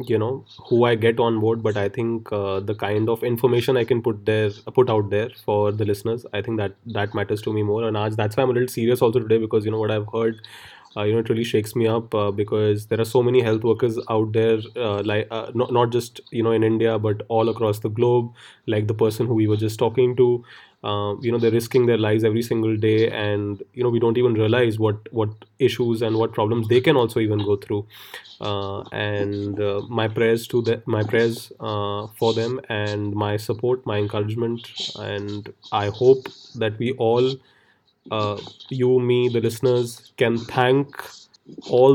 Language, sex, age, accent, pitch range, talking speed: English, male, 20-39, Indian, 105-120 Hz, 215 wpm